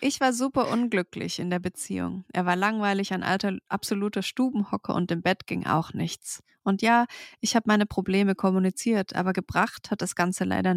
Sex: female